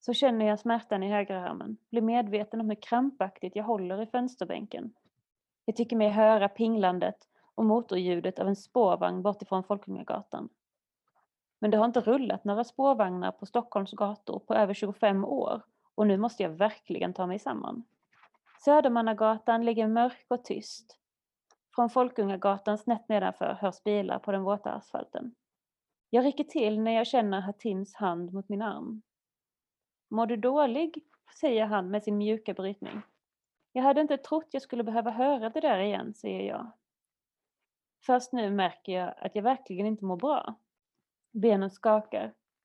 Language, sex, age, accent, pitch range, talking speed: Swedish, female, 30-49, native, 200-235 Hz, 155 wpm